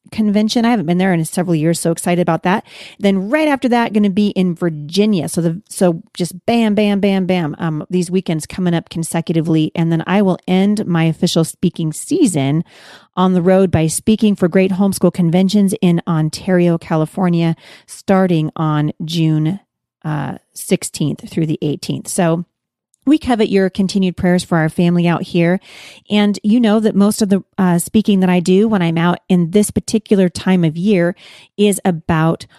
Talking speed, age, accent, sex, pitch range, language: 180 wpm, 40-59, American, female, 165-210 Hz, English